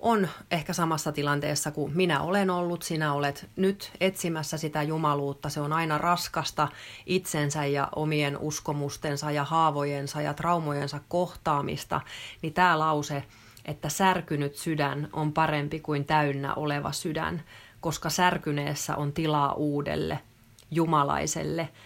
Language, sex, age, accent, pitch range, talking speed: Finnish, female, 30-49, native, 145-170 Hz, 120 wpm